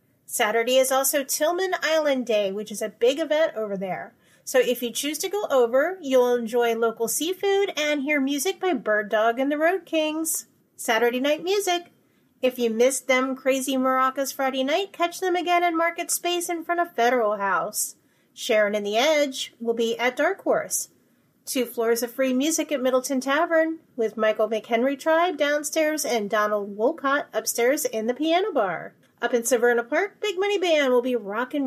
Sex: female